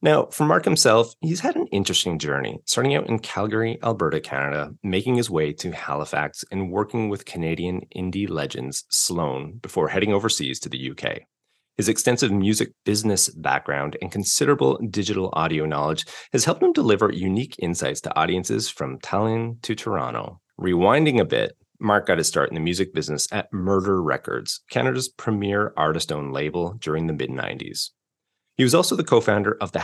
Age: 30-49